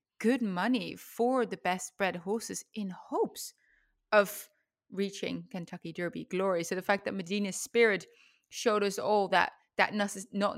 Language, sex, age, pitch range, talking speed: English, female, 30-49, 190-235 Hz, 150 wpm